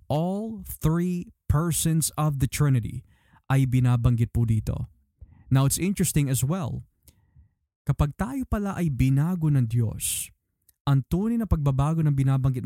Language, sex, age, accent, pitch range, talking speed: Filipino, male, 20-39, native, 120-165 Hz, 135 wpm